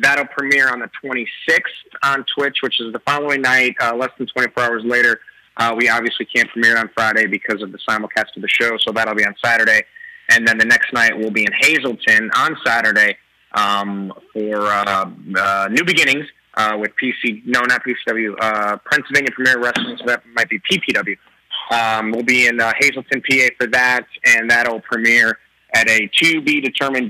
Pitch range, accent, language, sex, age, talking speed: 110-130 Hz, American, English, male, 20-39, 185 wpm